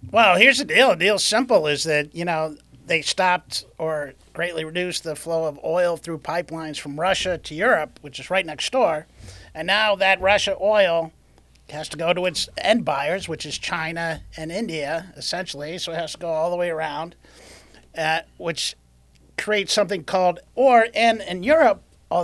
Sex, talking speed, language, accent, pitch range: male, 185 wpm, English, American, 150-195 Hz